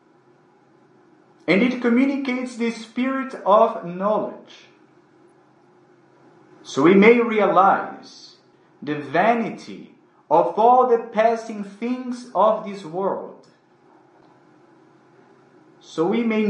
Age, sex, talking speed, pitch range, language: 40-59, male, 85 wpm, 195-265 Hz, English